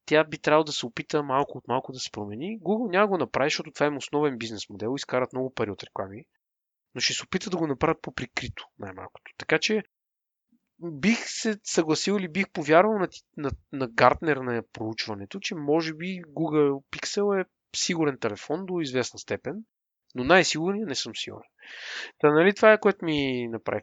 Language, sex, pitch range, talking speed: Bulgarian, male, 130-180 Hz, 190 wpm